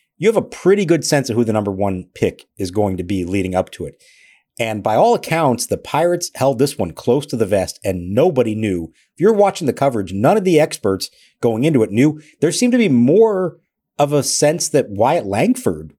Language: English